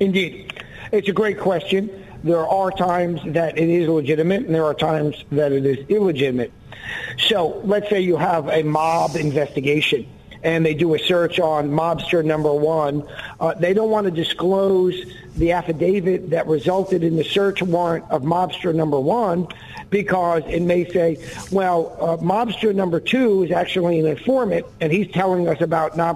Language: English